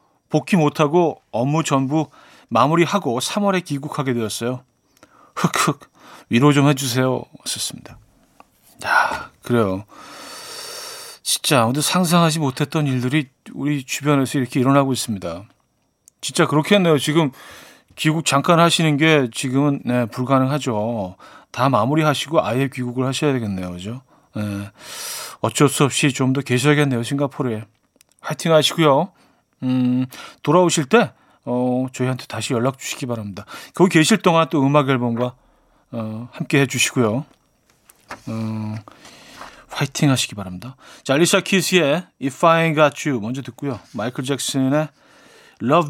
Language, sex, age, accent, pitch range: Korean, male, 40-59, native, 125-160 Hz